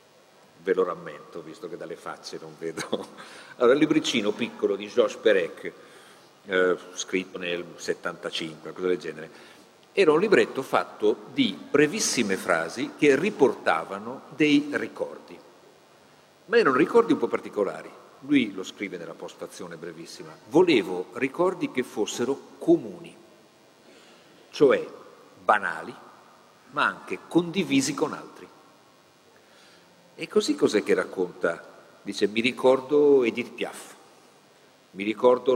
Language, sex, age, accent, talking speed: Italian, male, 50-69, native, 120 wpm